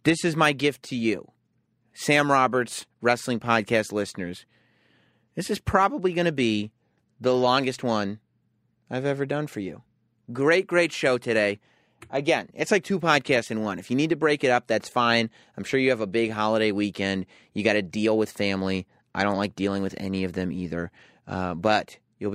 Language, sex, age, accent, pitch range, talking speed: English, male, 30-49, American, 105-140 Hz, 190 wpm